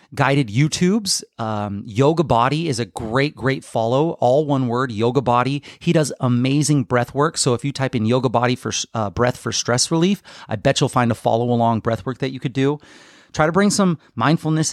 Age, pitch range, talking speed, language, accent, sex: 30-49, 120-155 Hz, 205 wpm, English, American, male